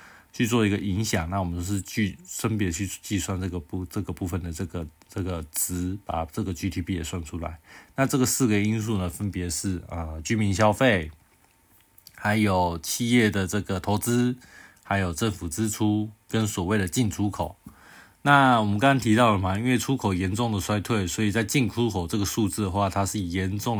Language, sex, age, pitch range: Chinese, male, 20-39, 90-110 Hz